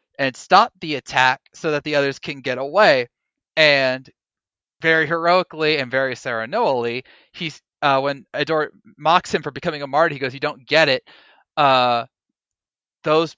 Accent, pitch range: American, 125-155 Hz